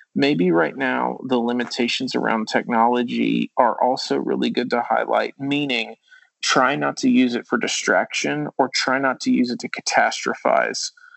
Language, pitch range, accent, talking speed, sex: English, 120-145 Hz, American, 155 wpm, male